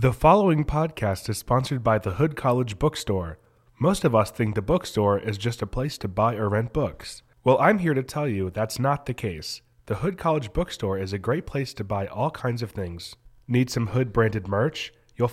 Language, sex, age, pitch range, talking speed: English, male, 30-49, 110-145 Hz, 210 wpm